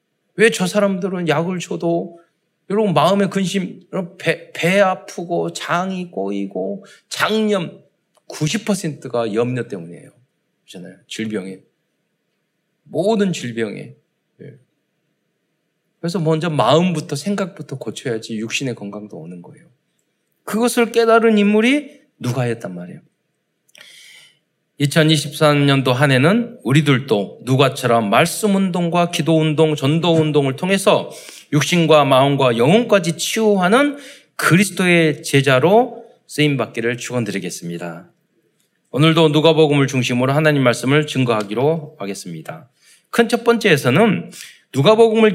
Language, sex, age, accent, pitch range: Korean, male, 40-59, native, 135-195 Hz